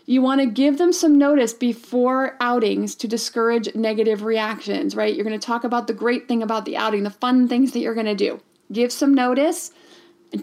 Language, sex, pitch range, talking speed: English, female, 220-275 Hz, 215 wpm